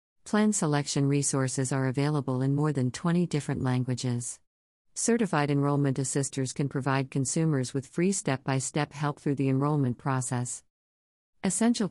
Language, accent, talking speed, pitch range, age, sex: English, American, 130 wpm, 130-155 Hz, 50-69, female